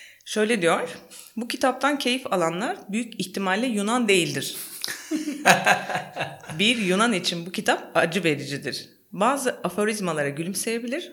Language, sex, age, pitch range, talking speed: Turkish, female, 30-49, 155-200 Hz, 110 wpm